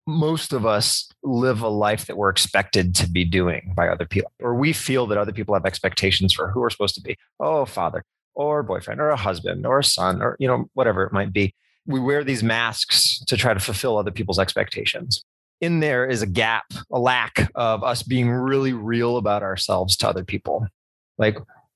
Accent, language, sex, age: American, English, male, 30-49